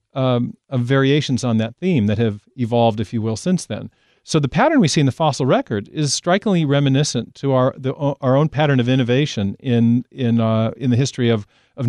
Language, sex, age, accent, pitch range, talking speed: English, male, 40-59, American, 115-155 Hz, 210 wpm